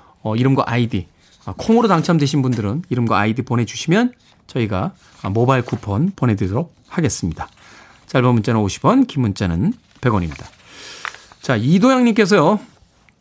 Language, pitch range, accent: Korean, 115-185 Hz, native